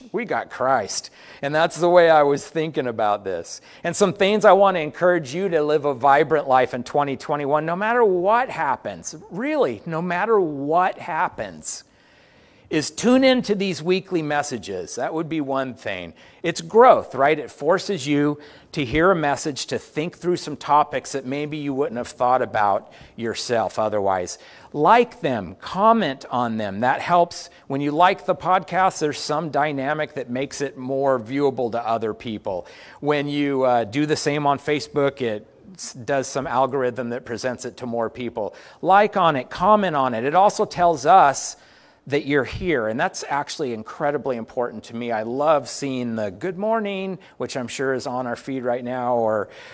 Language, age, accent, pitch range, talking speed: English, 40-59, American, 130-170 Hz, 180 wpm